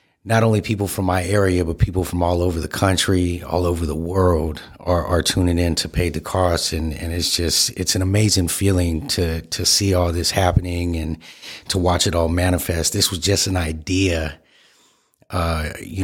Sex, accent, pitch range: male, American, 85-105 Hz